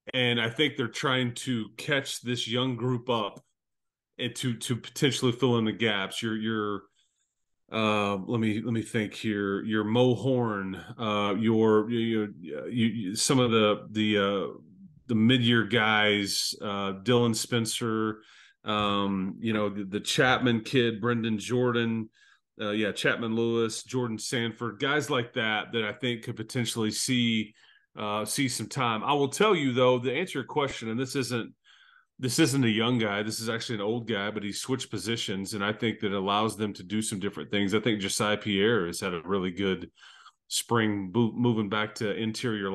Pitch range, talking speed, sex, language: 105-125 Hz, 180 wpm, male, English